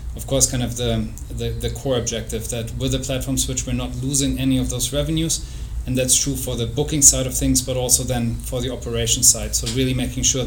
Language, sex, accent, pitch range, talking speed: English, male, German, 115-130 Hz, 235 wpm